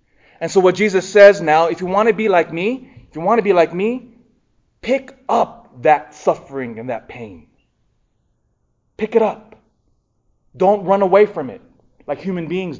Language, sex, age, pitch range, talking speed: English, male, 20-39, 130-205 Hz, 180 wpm